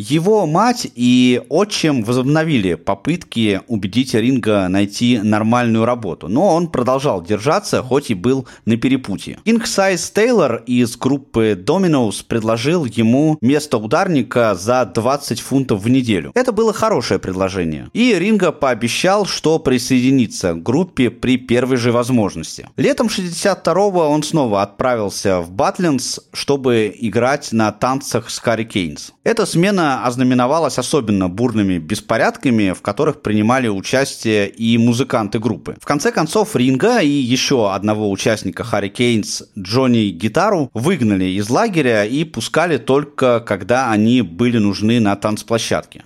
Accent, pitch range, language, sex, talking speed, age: native, 110-150 Hz, Russian, male, 130 wpm, 30-49